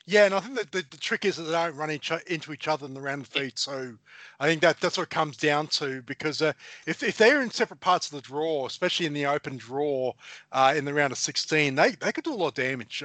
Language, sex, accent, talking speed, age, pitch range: English, male, Australian, 285 wpm, 30-49, 145-185 Hz